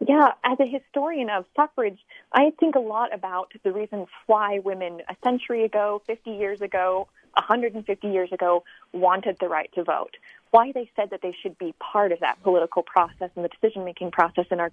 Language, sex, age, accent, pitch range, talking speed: English, female, 30-49, American, 185-235 Hz, 190 wpm